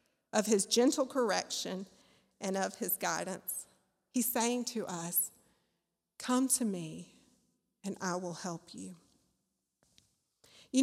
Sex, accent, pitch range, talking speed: female, American, 210-290 Hz, 115 wpm